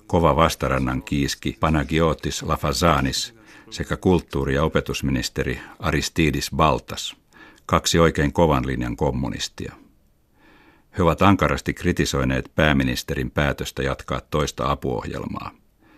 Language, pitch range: Finnish, 70-80 Hz